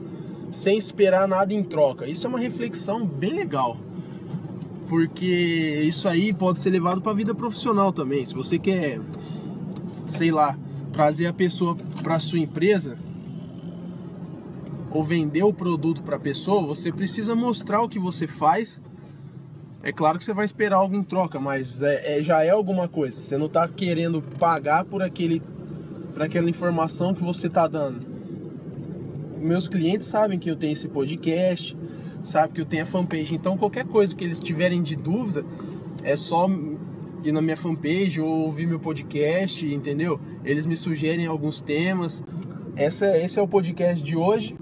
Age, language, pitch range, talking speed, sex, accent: 20-39, Portuguese, 155-180 Hz, 165 wpm, male, Brazilian